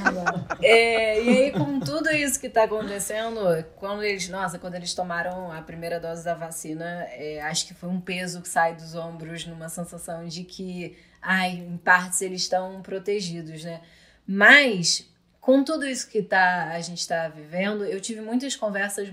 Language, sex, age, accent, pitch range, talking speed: Portuguese, female, 20-39, Brazilian, 180-235 Hz, 155 wpm